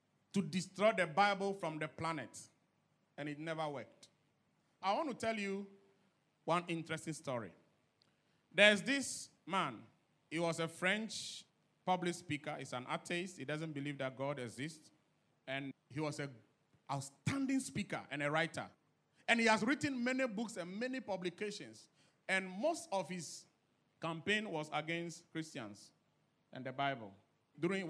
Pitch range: 145-185 Hz